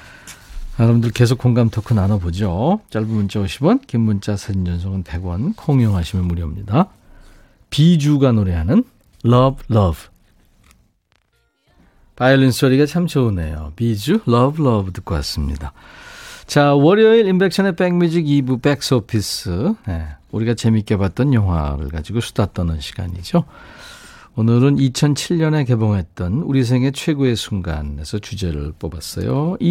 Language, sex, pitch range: Korean, male, 100-145 Hz